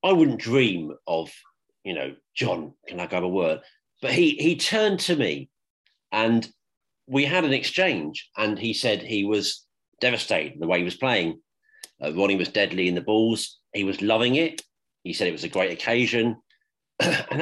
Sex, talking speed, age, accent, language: male, 185 wpm, 40-59, British, English